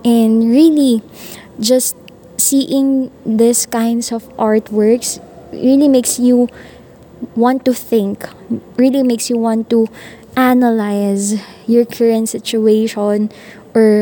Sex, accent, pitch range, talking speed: female, native, 205-230 Hz, 105 wpm